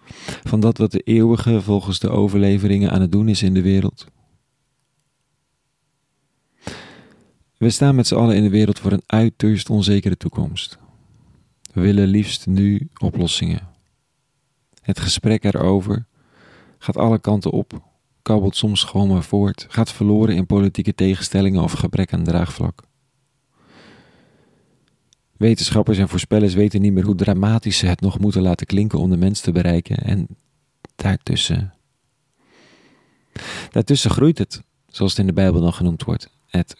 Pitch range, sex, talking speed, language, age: 95-110 Hz, male, 140 wpm, Dutch, 40-59